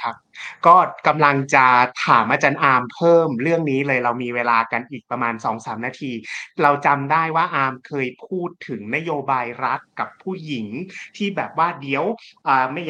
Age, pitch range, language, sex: 30-49, 130-175 Hz, Thai, male